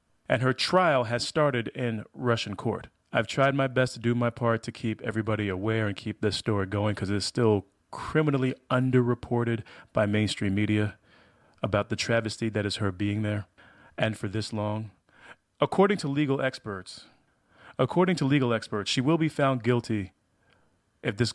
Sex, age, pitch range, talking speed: male, 30-49, 105-135 Hz, 170 wpm